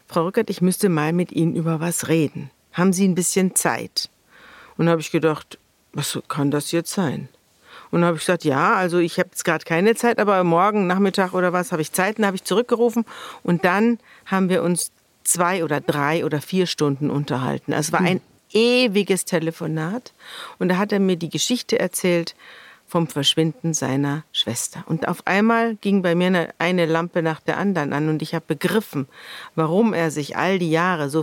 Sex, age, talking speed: female, 50-69, 200 wpm